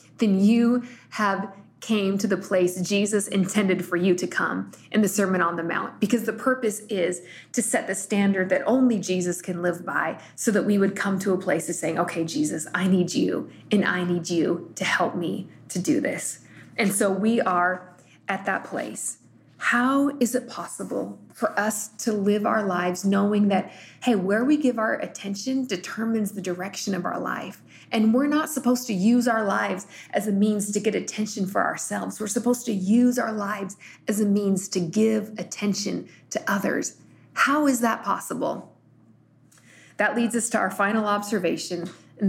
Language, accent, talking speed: English, American, 185 wpm